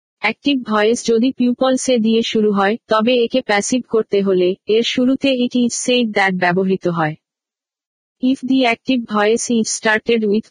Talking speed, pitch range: 160 wpm, 205-245 Hz